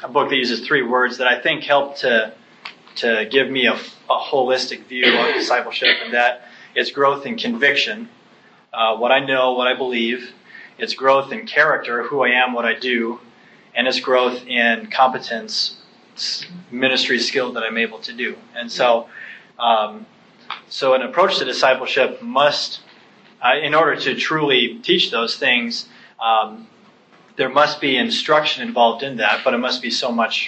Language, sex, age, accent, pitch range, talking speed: English, male, 30-49, American, 120-140 Hz, 170 wpm